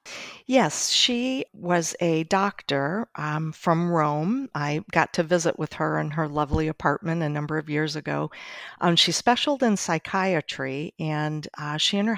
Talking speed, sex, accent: 165 wpm, female, American